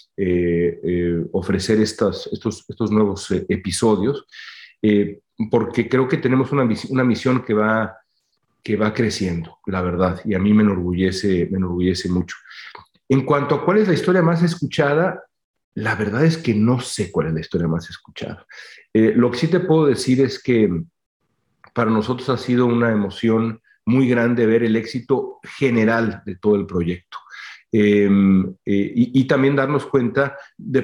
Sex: male